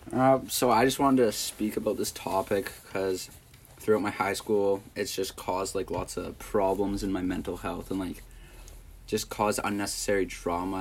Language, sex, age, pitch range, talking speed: English, male, 20-39, 90-105 Hz, 180 wpm